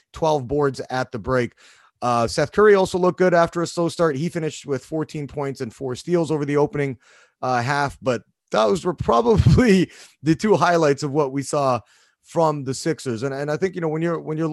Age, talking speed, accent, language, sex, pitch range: 30-49, 215 wpm, American, English, male, 125-155 Hz